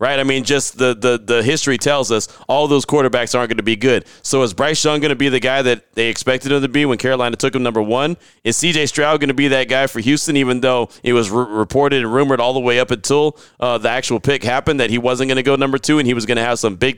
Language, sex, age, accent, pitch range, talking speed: English, male, 30-49, American, 130-160 Hz, 285 wpm